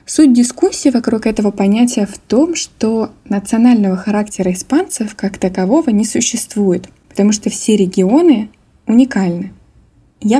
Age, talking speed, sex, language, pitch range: 20-39, 120 wpm, female, Russian, 195-245 Hz